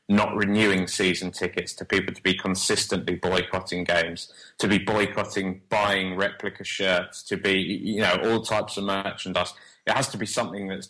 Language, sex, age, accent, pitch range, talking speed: English, male, 20-39, British, 95-115 Hz, 170 wpm